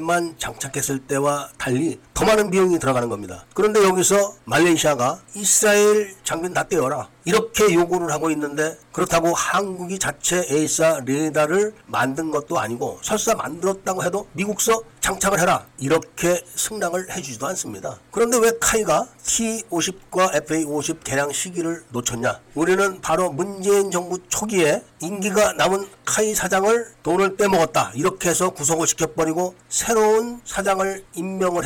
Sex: male